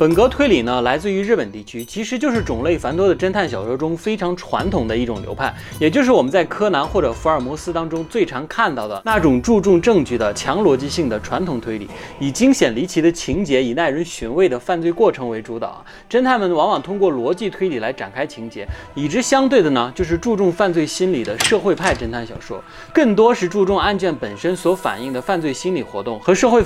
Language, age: Chinese, 20-39